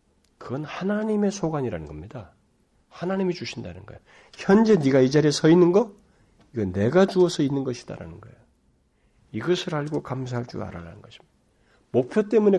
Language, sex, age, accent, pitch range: Korean, male, 40-59, native, 100-160 Hz